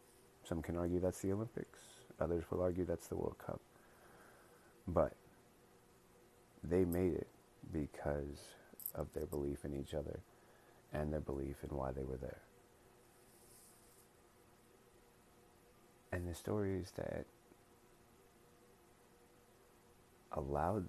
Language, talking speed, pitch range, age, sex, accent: English, 105 wpm, 75-120 Hz, 30-49, male, American